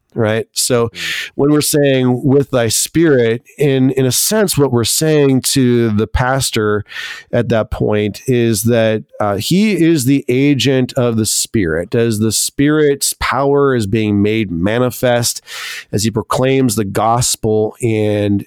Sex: male